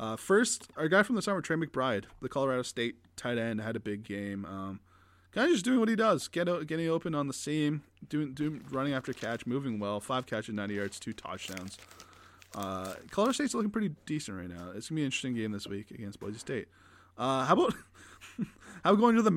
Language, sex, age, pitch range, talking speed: English, male, 20-39, 110-155 Hz, 230 wpm